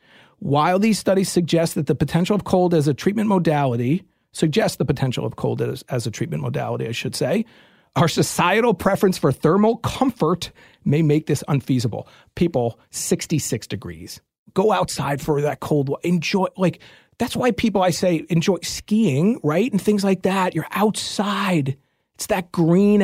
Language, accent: English, American